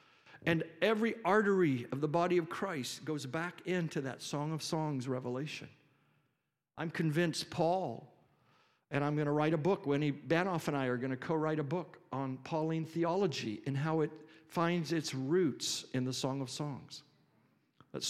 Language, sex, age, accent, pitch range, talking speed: English, male, 50-69, American, 130-170 Hz, 165 wpm